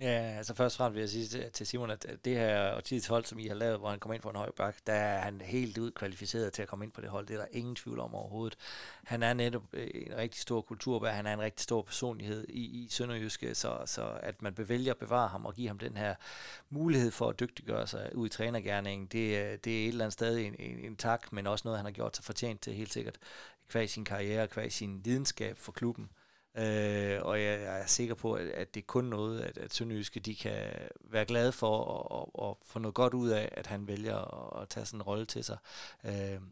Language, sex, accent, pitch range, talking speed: Danish, male, native, 105-115 Hz, 250 wpm